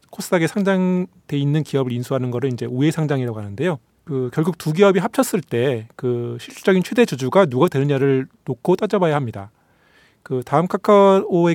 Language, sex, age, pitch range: Korean, male, 40-59, 125-185 Hz